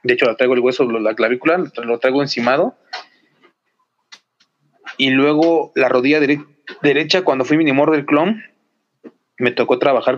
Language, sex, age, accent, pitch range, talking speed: Spanish, male, 30-49, Mexican, 125-150 Hz, 165 wpm